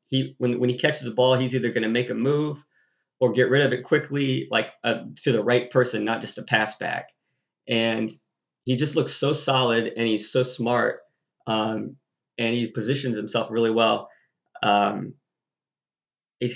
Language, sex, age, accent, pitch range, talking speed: English, male, 30-49, American, 115-135 Hz, 180 wpm